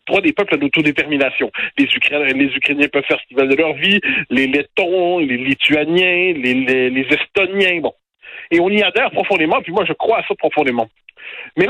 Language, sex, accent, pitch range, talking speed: French, male, French, 150-230 Hz, 195 wpm